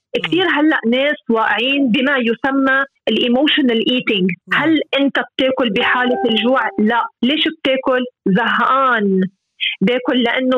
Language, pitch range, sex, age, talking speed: English, 230-300 Hz, female, 30-49, 115 wpm